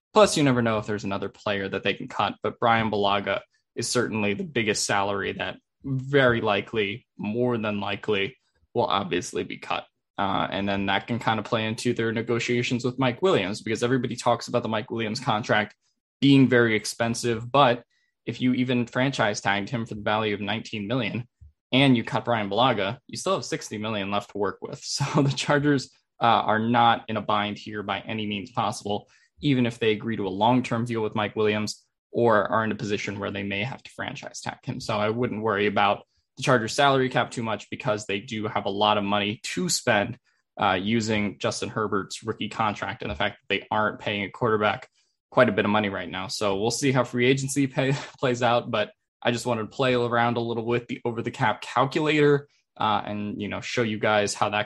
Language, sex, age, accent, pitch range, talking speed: English, male, 10-29, American, 105-125 Hz, 215 wpm